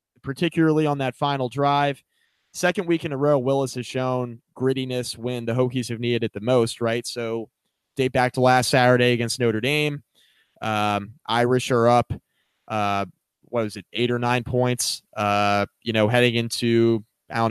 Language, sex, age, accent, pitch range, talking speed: English, male, 20-39, American, 110-125 Hz, 175 wpm